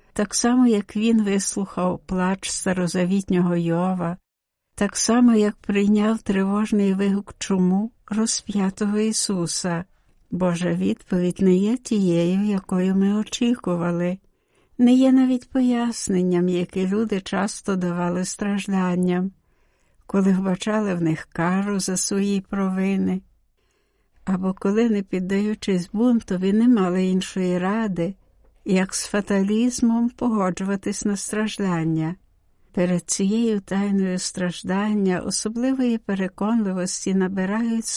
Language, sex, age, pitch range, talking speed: Ukrainian, female, 60-79, 180-220 Hz, 100 wpm